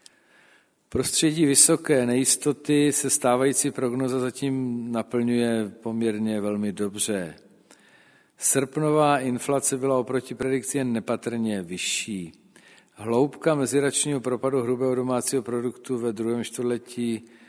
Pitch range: 110-135 Hz